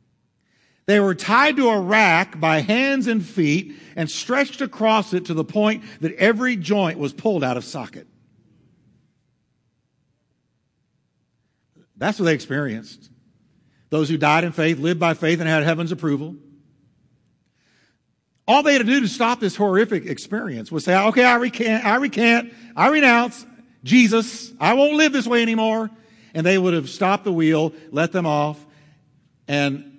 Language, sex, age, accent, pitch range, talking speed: English, male, 50-69, American, 165-230 Hz, 155 wpm